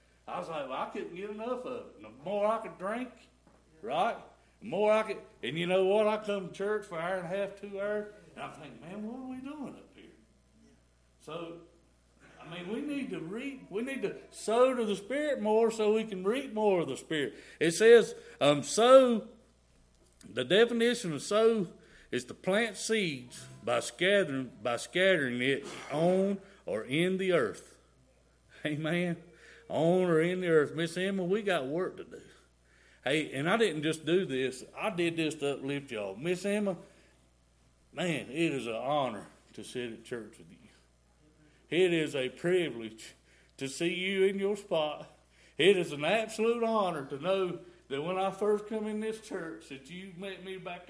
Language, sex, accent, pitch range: English, male, American, 145-210 Hz